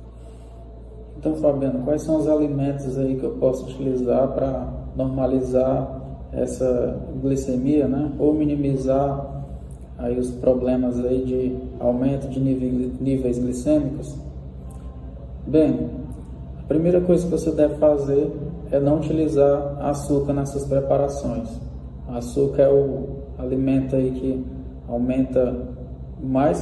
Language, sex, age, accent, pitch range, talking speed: Portuguese, male, 20-39, Brazilian, 120-140 Hz, 115 wpm